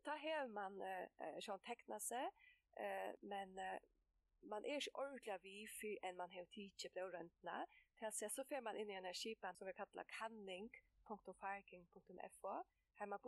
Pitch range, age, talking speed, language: 185-245 Hz, 20-39, 115 wpm, Danish